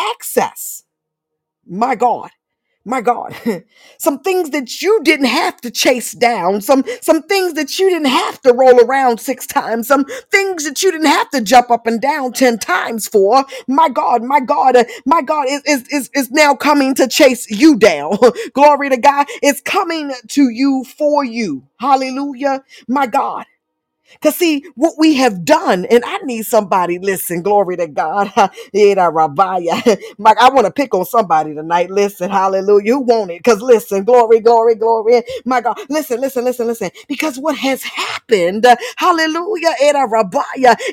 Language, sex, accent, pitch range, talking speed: English, female, American, 235-315 Hz, 165 wpm